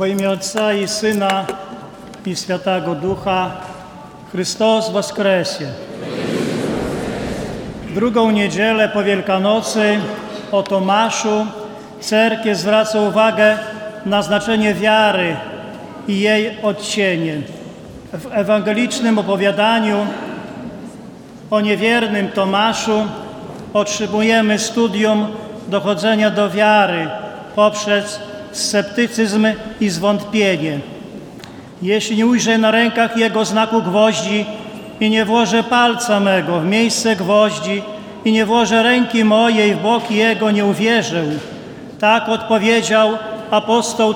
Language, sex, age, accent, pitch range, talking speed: Polish, male, 40-59, native, 205-220 Hz, 95 wpm